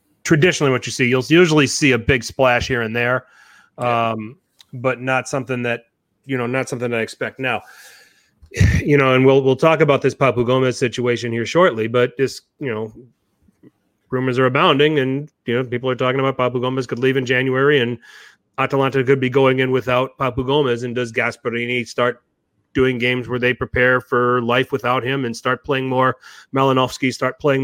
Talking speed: 190 wpm